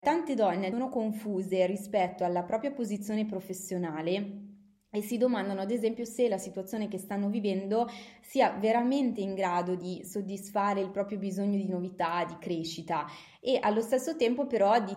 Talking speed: 155 wpm